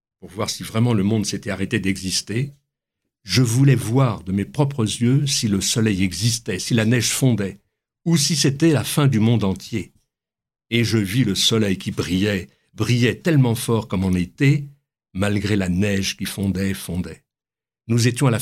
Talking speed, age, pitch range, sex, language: 180 wpm, 60-79, 95-125 Hz, male, French